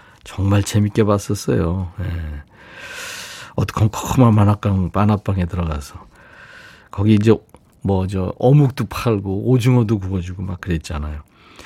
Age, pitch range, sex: 50-69, 95-140 Hz, male